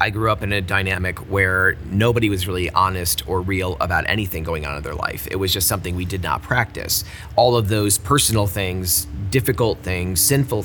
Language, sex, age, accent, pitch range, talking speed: English, male, 30-49, American, 90-105 Hz, 205 wpm